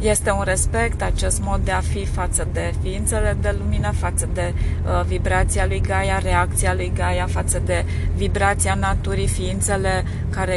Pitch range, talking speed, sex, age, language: 90-105 Hz, 155 wpm, female, 20-39, Romanian